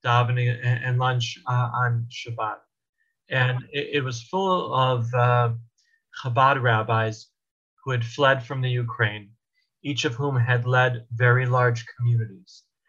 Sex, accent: male, American